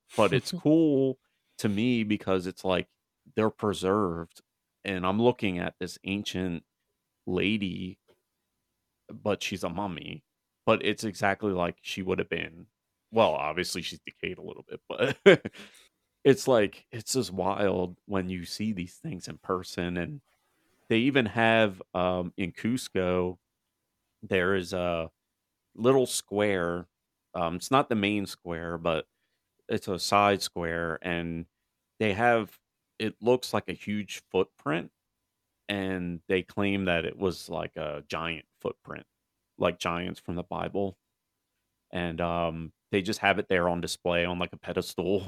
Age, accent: 30-49, American